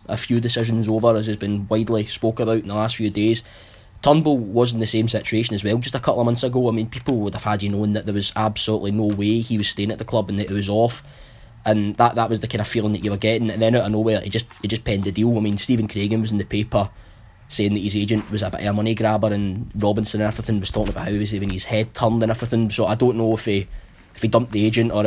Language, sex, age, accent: English, male, 10-29, British